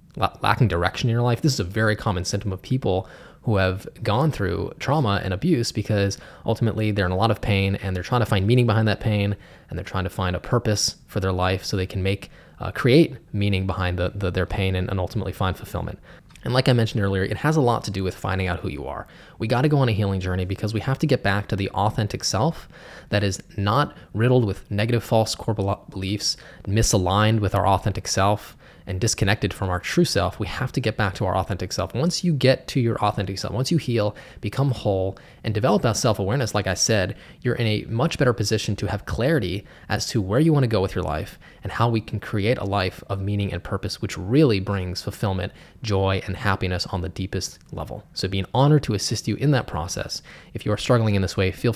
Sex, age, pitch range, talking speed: male, 20-39, 95-115 Hz, 240 wpm